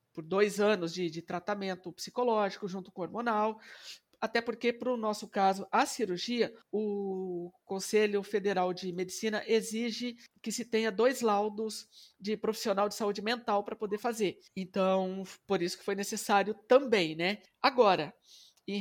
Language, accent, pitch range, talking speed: Portuguese, Brazilian, 210-270 Hz, 150 wpm